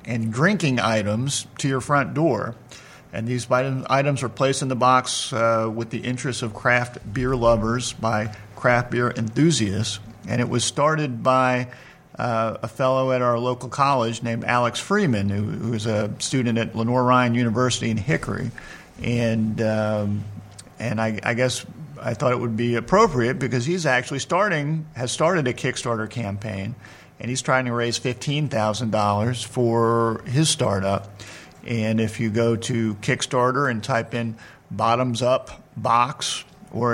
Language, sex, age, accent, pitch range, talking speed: English, male, 50-69, American, 110-130 Hz, 155 wpm